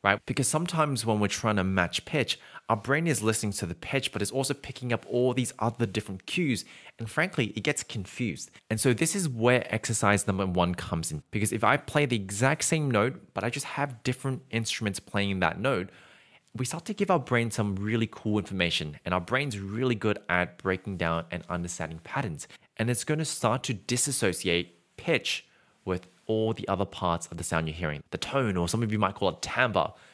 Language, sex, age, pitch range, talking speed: English, male, 20-39, 95-130 Hz, 215 wpm